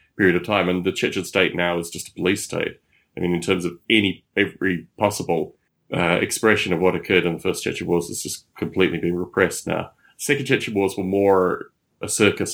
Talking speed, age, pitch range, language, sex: 210 wpm, 30-49, 90-105 Hz, English, male